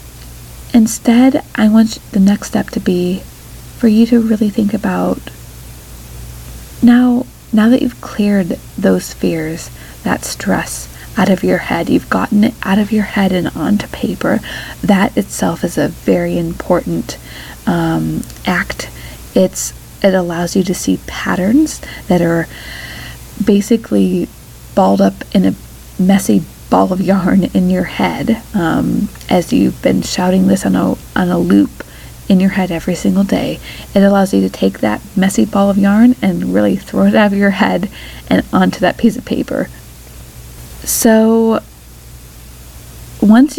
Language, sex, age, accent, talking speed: English, female, 30-49, American, 150 wpm